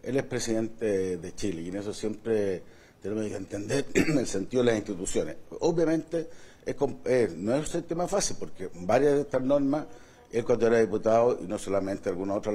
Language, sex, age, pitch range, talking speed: Spanish, male, 60-79, 110-160 Hz, 185 wpm